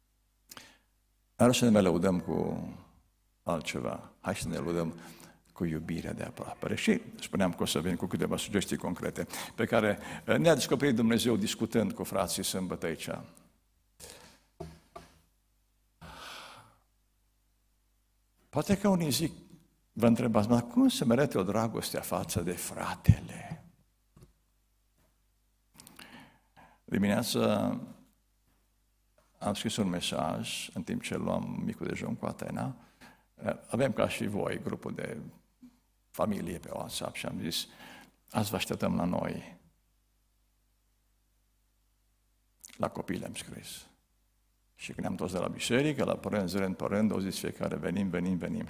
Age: 60-79